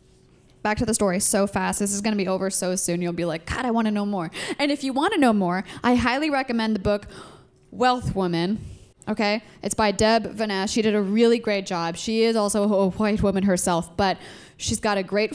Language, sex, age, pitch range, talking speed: English, female, 10-29, 195-245 Hz, 235 wpm